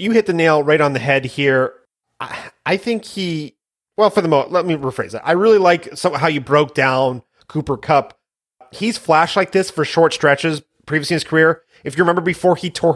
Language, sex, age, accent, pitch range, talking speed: English, male, 30-49, American, 140-170 Hz, 220 wpm